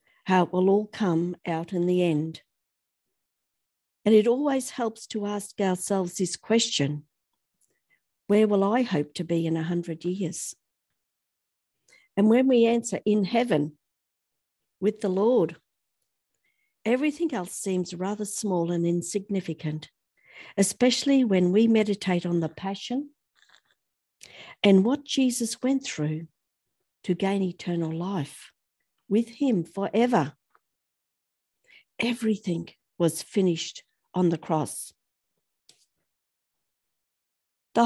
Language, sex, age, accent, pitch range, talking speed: English, female, 50-69, Australian, 170-230 Hz, 110 wpm